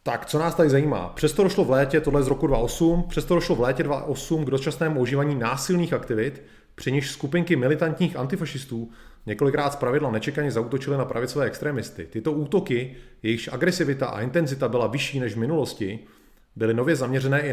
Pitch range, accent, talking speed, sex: 120-150 Hz, native, 170 wpm, male